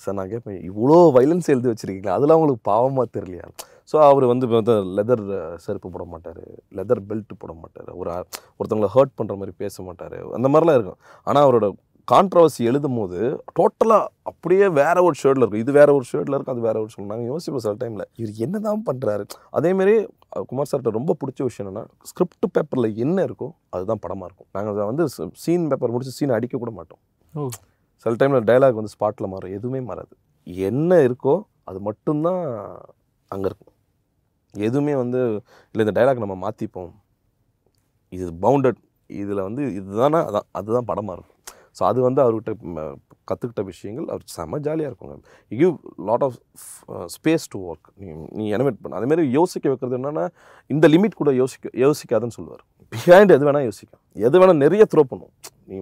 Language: Tamil